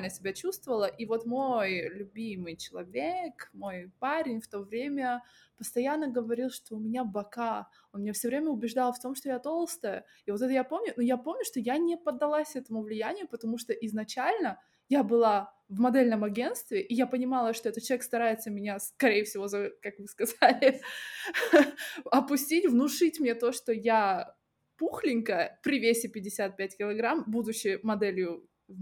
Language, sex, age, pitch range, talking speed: Russian, female, 20-39, 200-255 Hz, 160 wpm